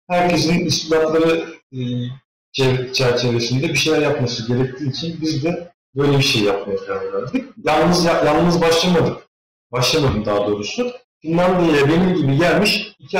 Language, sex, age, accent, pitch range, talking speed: Turkish, male, 40-59, native, 125-180 Hz, 120 wpm